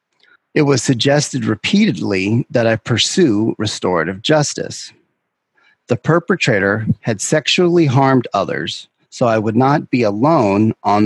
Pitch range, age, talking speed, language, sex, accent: 105-140 Hz, 40-59, 120 wpm, English, male, American